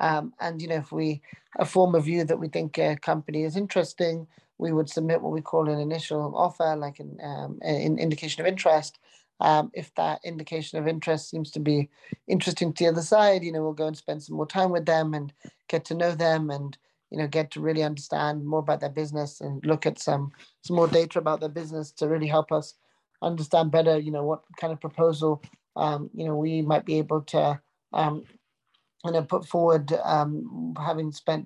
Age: 20-39